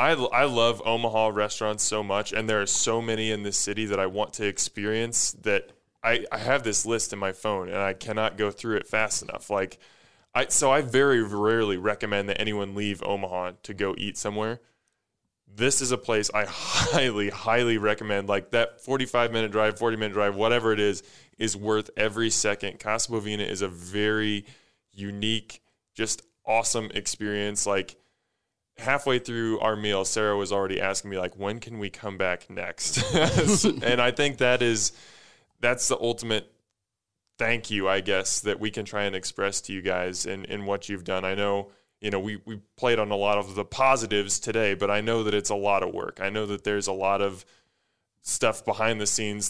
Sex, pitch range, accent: male, 100-115 Hz, American